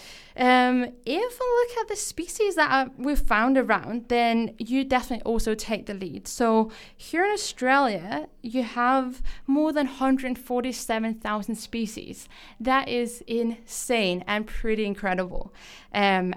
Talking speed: 135 wpm